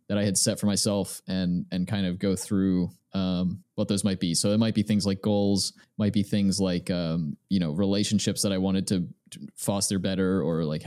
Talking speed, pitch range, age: 220 wpm, 100-120 Hz, 20-39